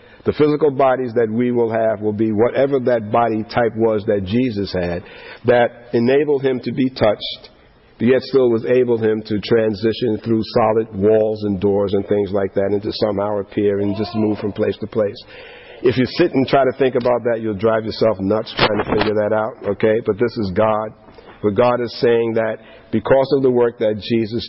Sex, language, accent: male, English, American